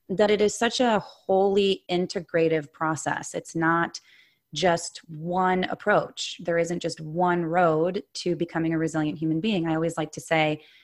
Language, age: English, 30-49